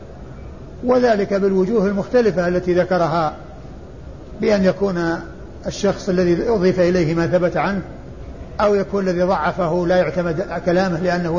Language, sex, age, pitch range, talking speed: Arabic, male, 60-79, 175-205 Hz, 120 wpm